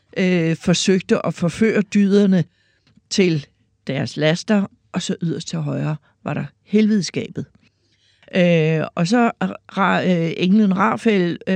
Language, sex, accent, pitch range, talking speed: Danish, female, native, 165-205 Hz, 100 wpm